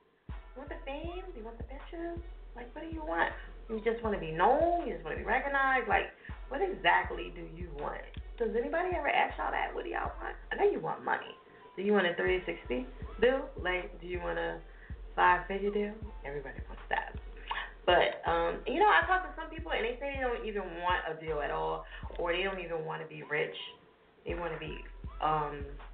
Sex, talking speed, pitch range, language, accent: female, 220 wpm, 175-275 Hz, English, American